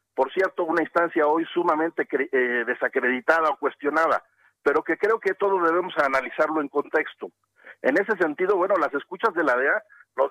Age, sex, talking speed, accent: 50-69, male, 175 wpm, Mexican